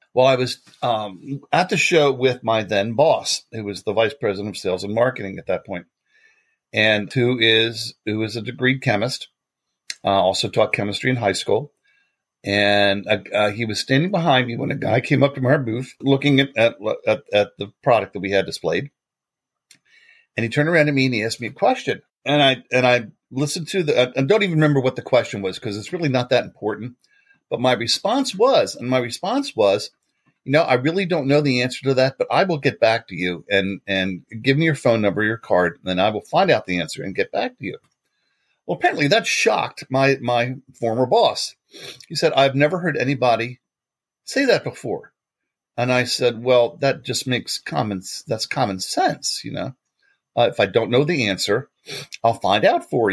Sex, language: male, English